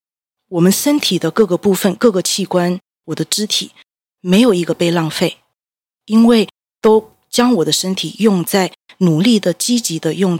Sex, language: female, Chinese